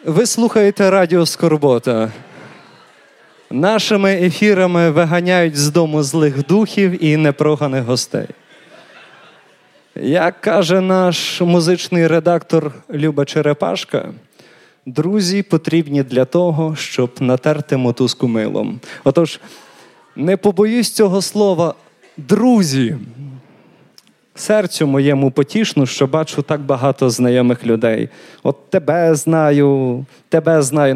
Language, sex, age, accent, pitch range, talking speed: Ukrainian, male, 20-39, native, 140-190 Hz, 95 wpm